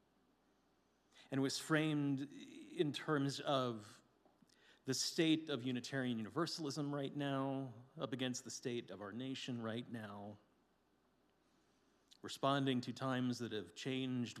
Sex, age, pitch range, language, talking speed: male, 40-59, 110-130 Hz, English, 115 wpm